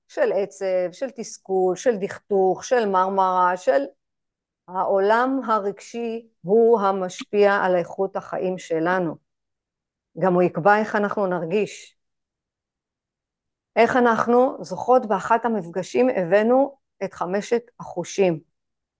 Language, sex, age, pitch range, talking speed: Hebrew, female, 50-69, 190-250 Hz, 100 wpm